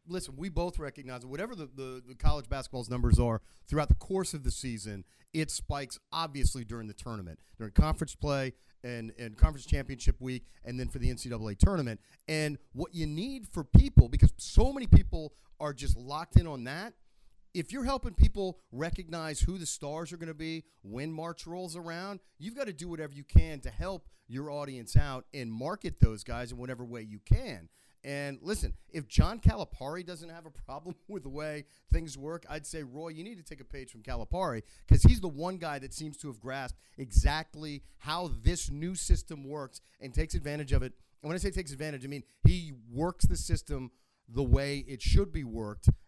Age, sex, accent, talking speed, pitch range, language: 40-59, male, American, 200 wpm, 125-160 Hz, English